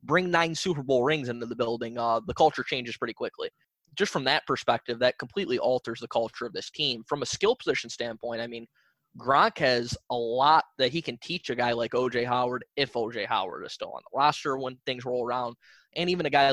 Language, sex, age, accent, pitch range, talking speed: English, male, 20-39, American, 120-155 Hz, 225 wpm